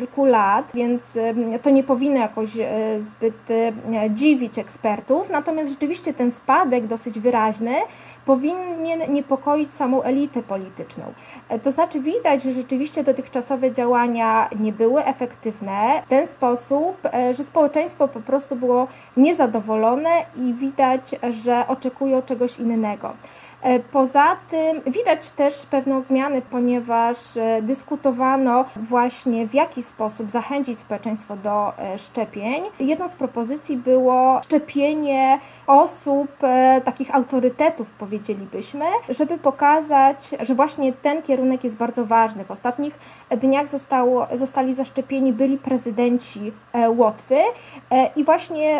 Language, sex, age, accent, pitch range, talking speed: Polish, female, 20-39, native, 235-280 Hz, 110 wpm